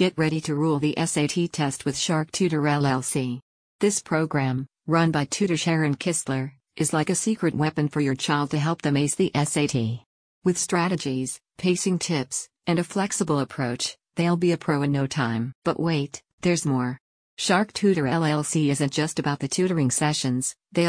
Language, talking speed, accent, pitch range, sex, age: English, 175 wpm, American, 140-165 Hz, female, 50-69